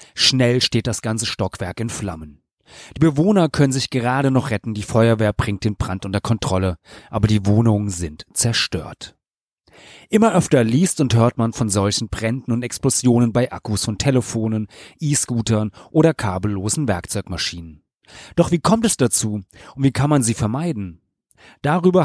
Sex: male